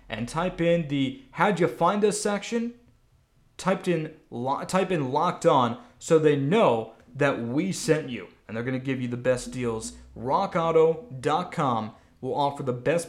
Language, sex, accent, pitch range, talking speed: English, male, American, 125-180 Hz, 170 wpm